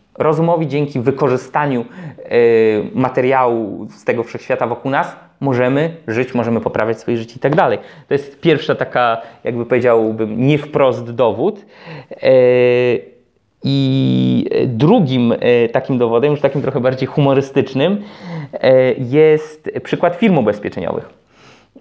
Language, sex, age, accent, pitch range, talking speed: Polish, male, 20-39, native, 120-160 Hz, 115 wpm